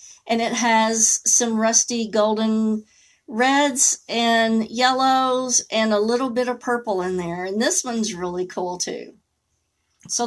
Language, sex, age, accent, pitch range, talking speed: English, female, 50-69, American, 200-235 Hz, 140 wpm